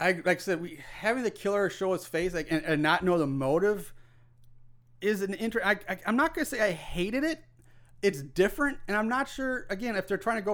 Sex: male